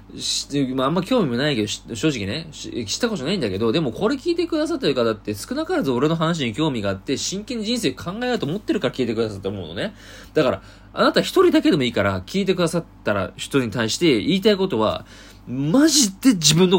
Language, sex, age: Japanese, male, 20-39